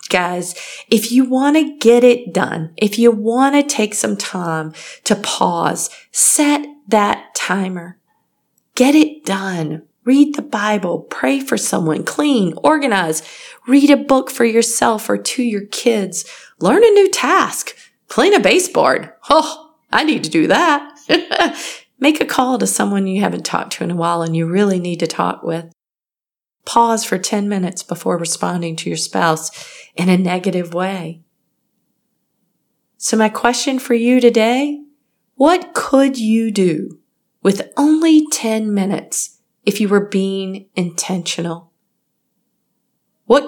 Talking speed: 145 wpm